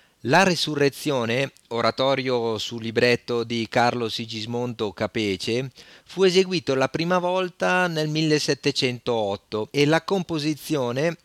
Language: Italian